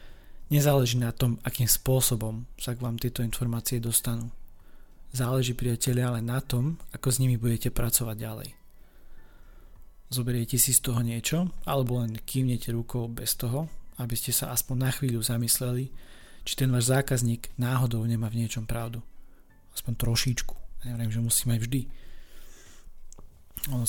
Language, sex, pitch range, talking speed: Slovak, male, 115-130 Hz, 145 wpm